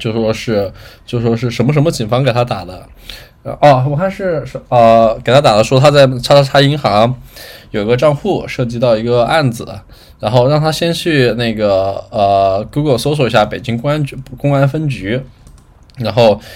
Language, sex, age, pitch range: Chinese, male, 10-29, 110-135 Hz